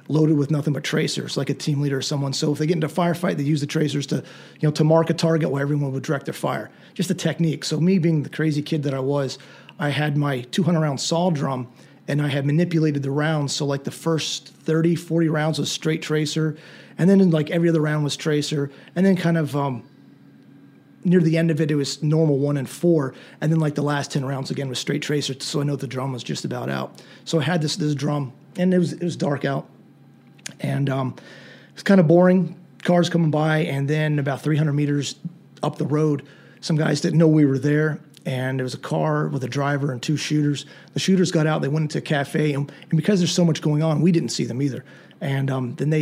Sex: male